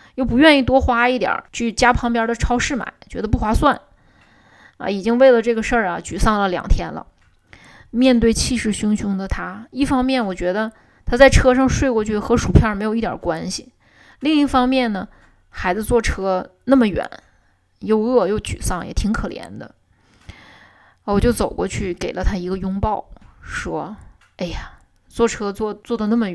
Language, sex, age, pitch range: Chinese, female, 20-39, 190-240 Hz